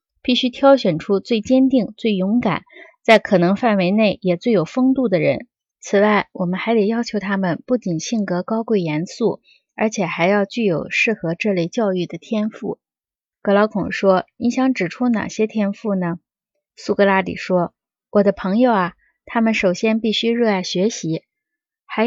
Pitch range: 190-235 Hz